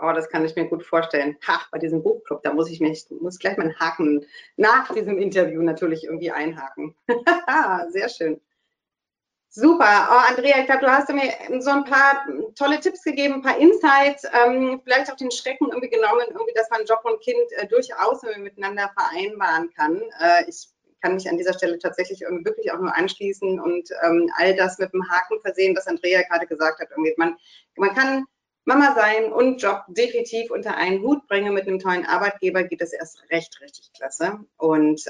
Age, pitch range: 30-49, 165-275 Hz